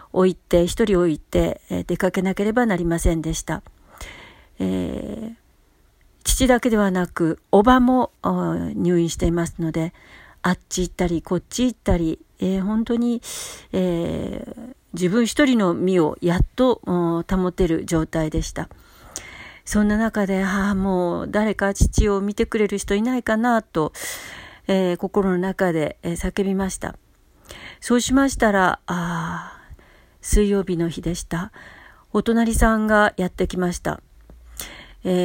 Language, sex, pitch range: Japanese, female, 170-210 Hz